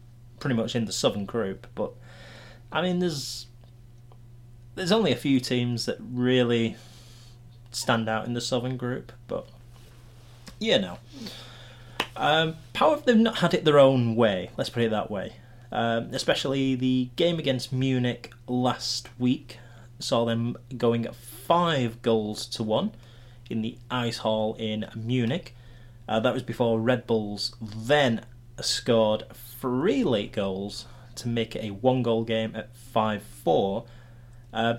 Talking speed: 145 wpm